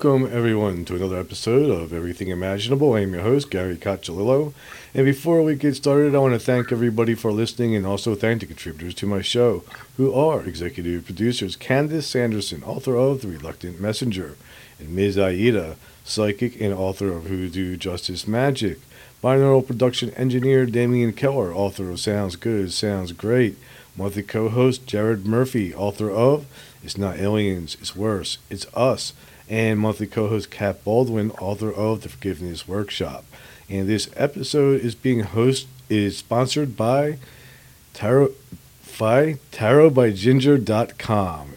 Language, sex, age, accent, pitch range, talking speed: English, male, 40-59, American, 95-125 Hz, 150 wpm